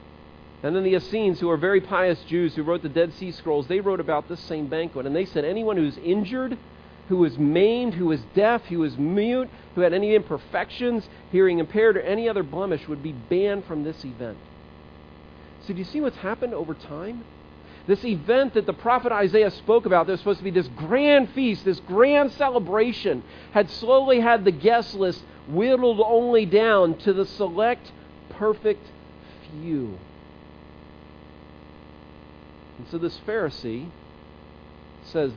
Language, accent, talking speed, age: English, American, 165 wpm, 40-59